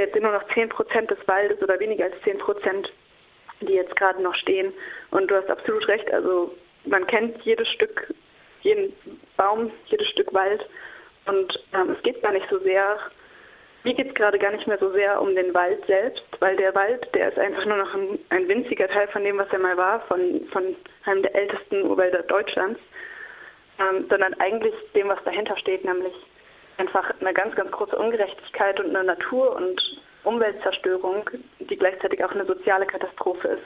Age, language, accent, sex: 20-39, German, German, female